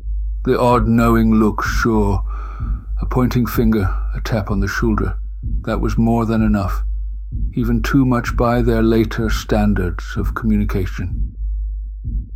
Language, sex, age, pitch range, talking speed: English, male, 60-79, 100-115 Hz, 130 wpm